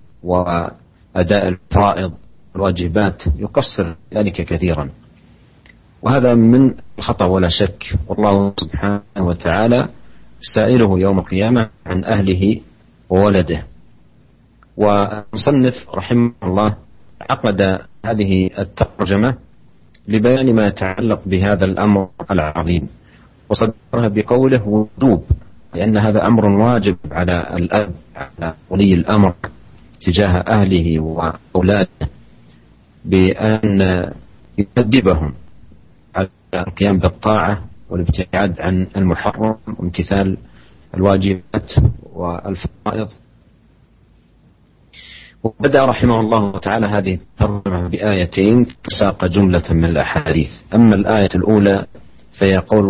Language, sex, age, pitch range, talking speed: Indonesian, male, 50-69, 90-105 Hz, 80 wpm